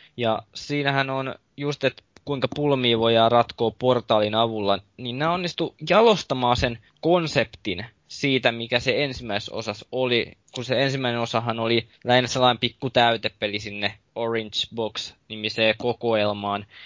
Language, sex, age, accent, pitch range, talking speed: Finnish, male, 20-39, native, 110-135 Hz, 130 wpm